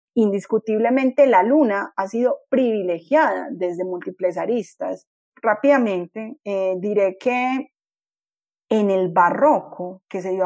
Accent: Colombian